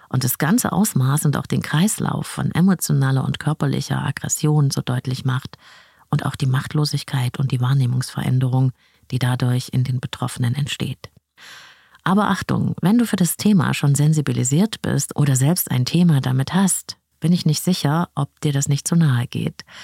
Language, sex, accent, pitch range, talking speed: German, female, German, 130-170 Hz, 170 wpm